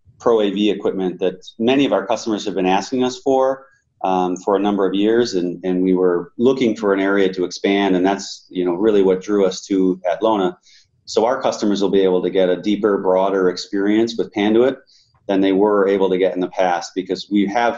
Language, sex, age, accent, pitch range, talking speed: English, male, 30-49, American, 95-105 Hz, 220 wpm